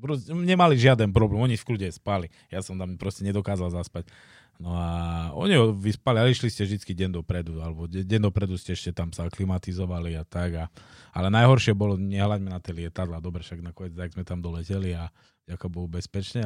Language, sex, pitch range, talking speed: Slovak, male, 90-105 Hz, 195 wpm